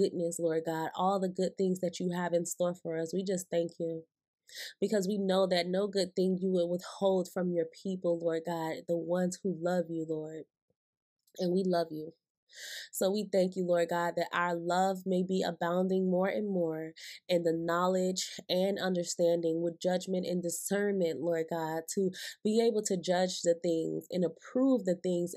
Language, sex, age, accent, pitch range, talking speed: English, female, 20-39, American, 170-195 Hz, 190 wpm